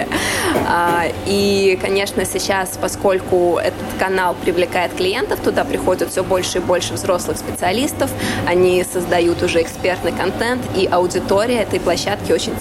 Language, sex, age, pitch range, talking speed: Russian, female, 20-39, 180-215 Hz, 125 wpm